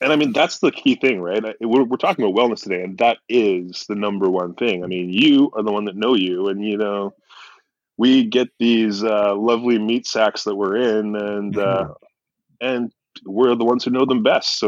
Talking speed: 220 wpm